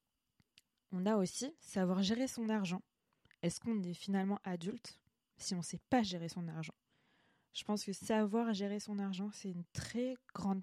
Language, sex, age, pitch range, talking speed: French, female, 20-39, 175-205 Hz, 175 wpm